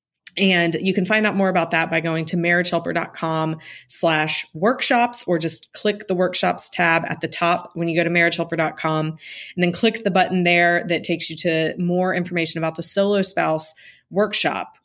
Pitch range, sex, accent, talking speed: 170-205 Hz, female, American, 180 wpm